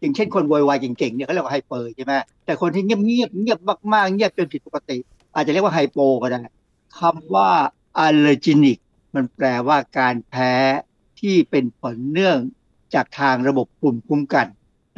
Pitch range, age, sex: 135-180 Hz, 60-79, male